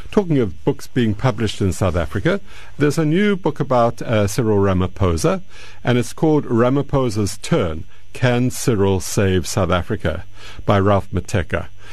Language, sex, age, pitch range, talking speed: English, male, 50-69, 95-115 Hz, 145 wpm